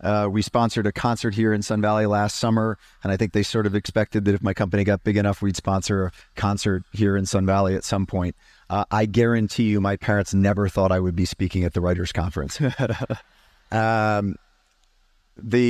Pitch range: 100-115 Hz